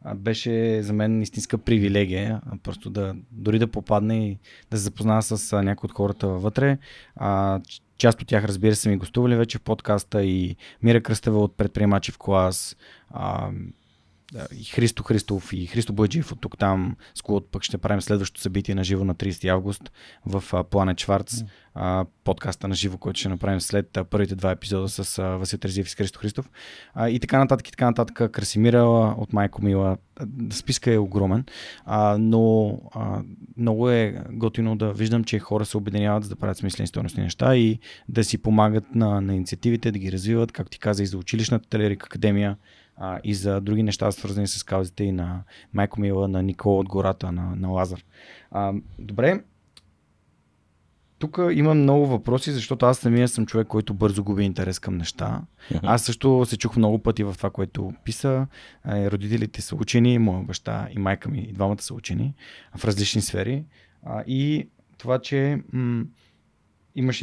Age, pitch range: 20-39, 95-115 Hz